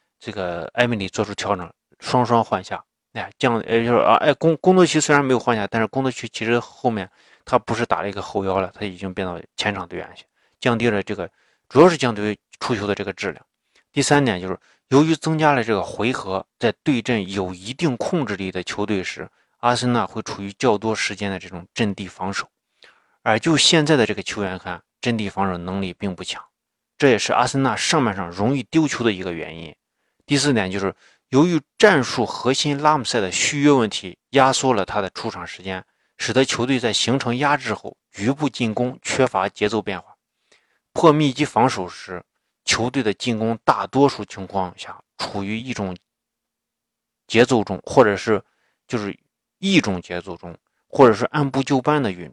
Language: Chinese